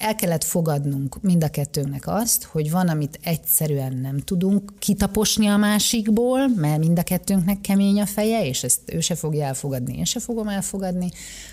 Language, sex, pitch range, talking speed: Hungarian, female, 150-190 Hz, 170 wpm